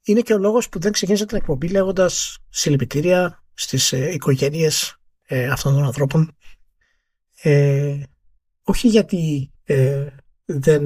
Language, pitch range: Greek, 135-185 Hz